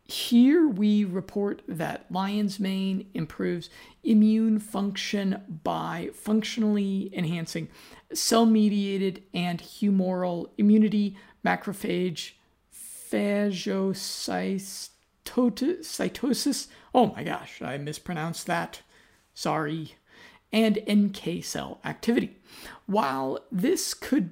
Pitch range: 165-215 Hz